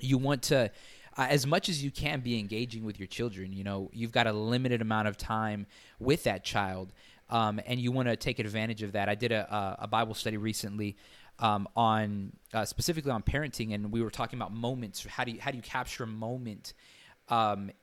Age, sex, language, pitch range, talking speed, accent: 20-39, male, English, 105-130 Hz, 225 wpm, American